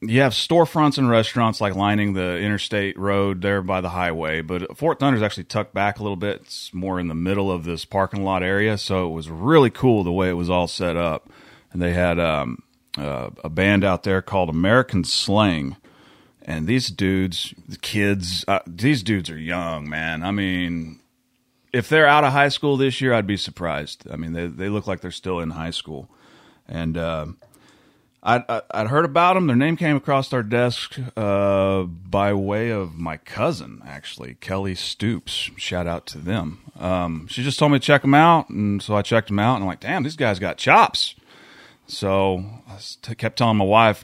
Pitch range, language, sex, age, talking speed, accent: 90-120 Hz, English, male, 30-49, 200 wpm, American